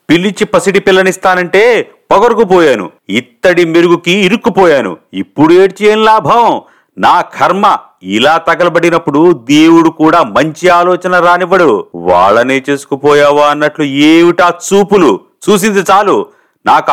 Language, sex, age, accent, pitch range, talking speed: Telugu, male, 50-69, native, 150-220 Hz, 95 wpm